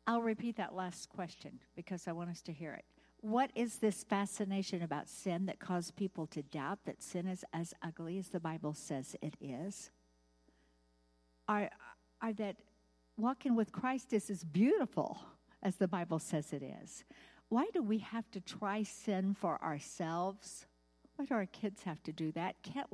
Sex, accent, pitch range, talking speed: female, American, 170-220 Hz, 175 wpm